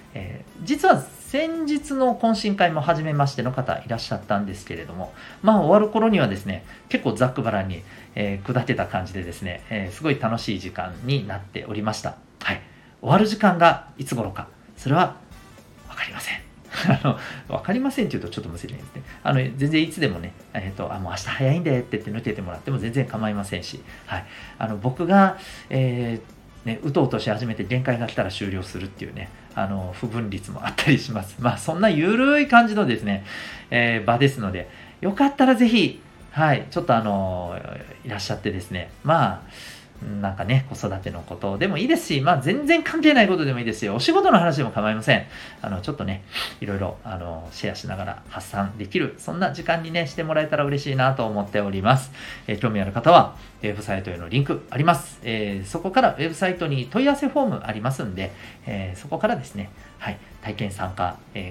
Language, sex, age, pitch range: Japanese, male, 40-59, 100-165 Hz